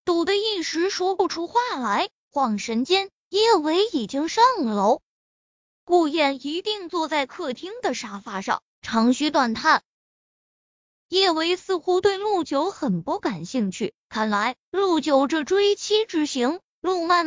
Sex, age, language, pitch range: female, 20-39, Chinese, 270-375 Hz